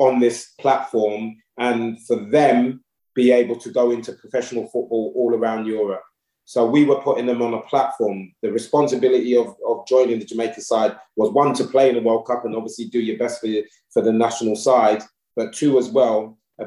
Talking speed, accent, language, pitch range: 200 wpm, British, English, 115-130 Hz